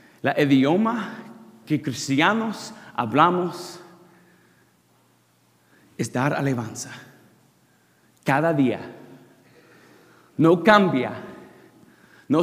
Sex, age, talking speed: male, 40-59, 65 wpm